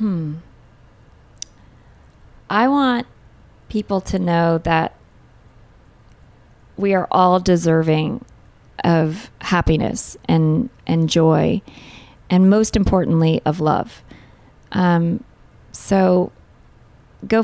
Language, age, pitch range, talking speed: English, 30-49, 165-205 Hz, 85 wpm